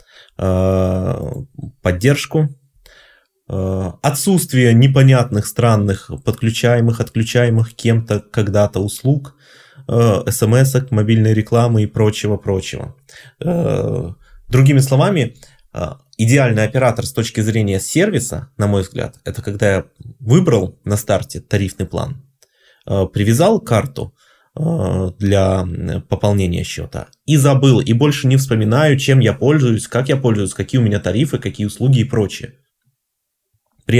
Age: 20-39